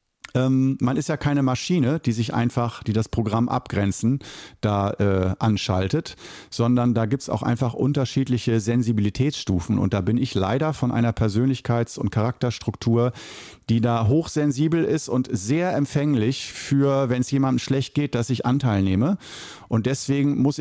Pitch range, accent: 105-135 Hz, German